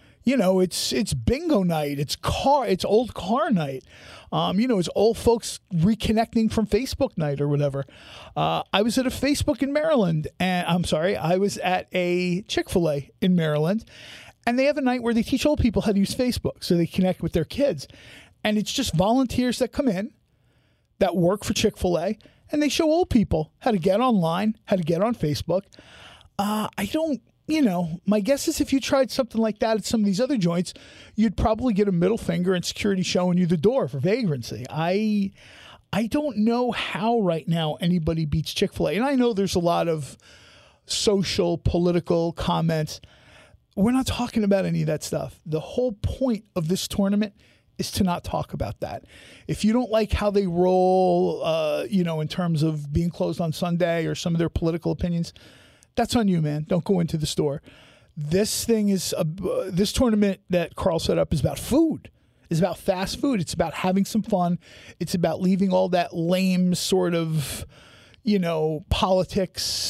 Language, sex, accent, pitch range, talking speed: English, male, American, 170-225 Hz, 195 wpm